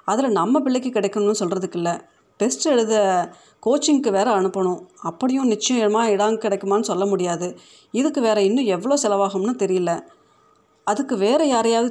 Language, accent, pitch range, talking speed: Tamil, native, 185-230 Hz, 130 wpm